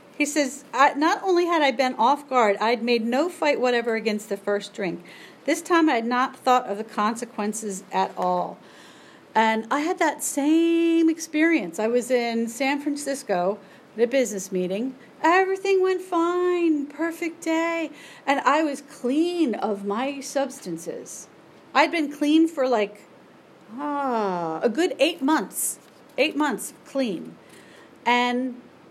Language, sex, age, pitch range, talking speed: English, female, 40-59, 225-295 Hz, 145 wpm